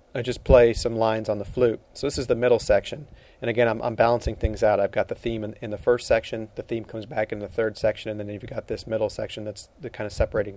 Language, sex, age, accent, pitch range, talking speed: English, male, 40-59, American, 105-115 Hz, 285 wpm